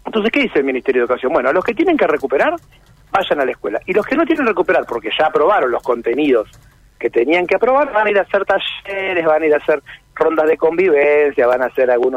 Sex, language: male, Spanish